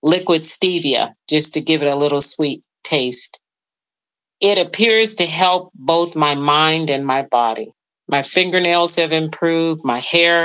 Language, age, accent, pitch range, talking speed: English, 40-59, American, 140-170 Hz, 150 wpm